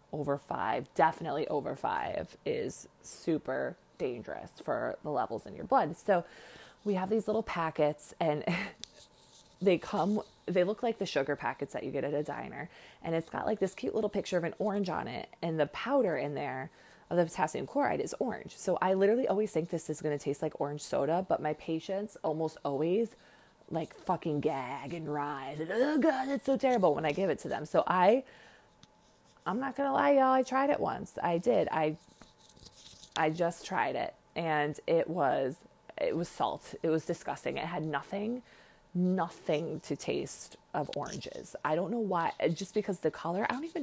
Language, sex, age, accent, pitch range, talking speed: English, female, 20-39, American, 155-215 Hz, 190 wpm